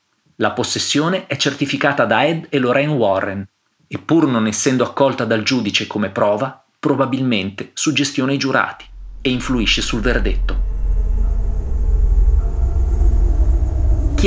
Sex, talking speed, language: male, 115 wpm, Italian